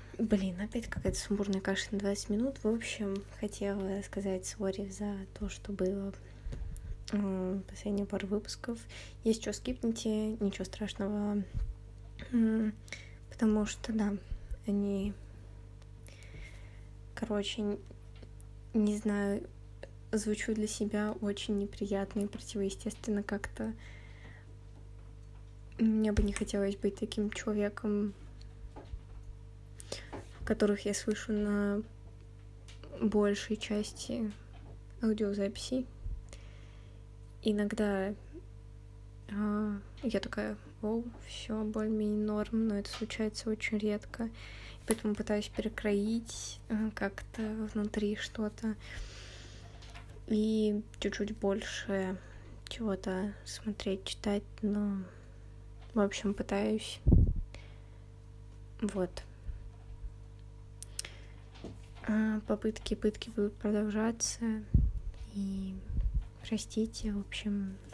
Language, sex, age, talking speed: Russian, female, 20-39, 80 wpm